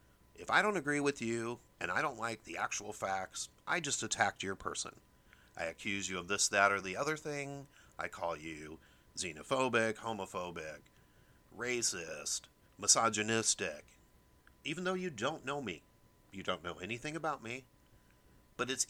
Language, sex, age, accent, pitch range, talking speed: English, male, 40-59, American, 90-115 Hz, 155 wpm